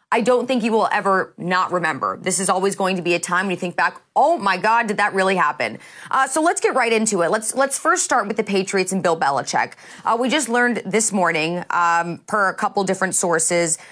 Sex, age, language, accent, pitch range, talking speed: female, 30-49, English, American, 175-215 Hz, 240 wpm